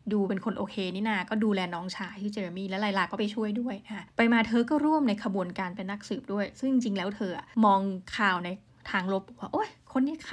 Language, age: Thai, 20-39